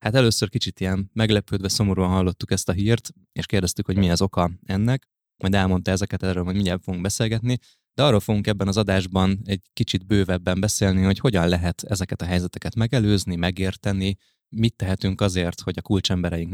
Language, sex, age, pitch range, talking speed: Hungarian, male, 20-39, 90-105 Hz, 180 wpm